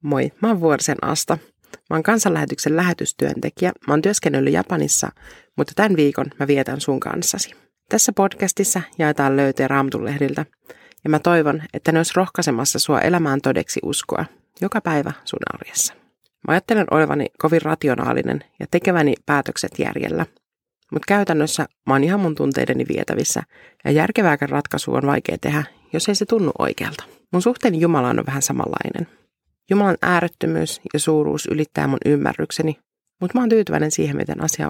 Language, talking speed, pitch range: Finnish, 150 wpm, 145-185 Hz